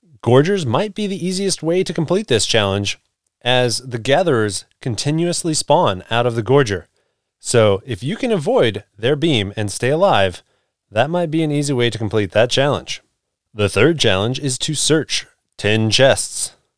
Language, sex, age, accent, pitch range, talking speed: English, male, 30-49, American, 105-160 Hz, 170 wpm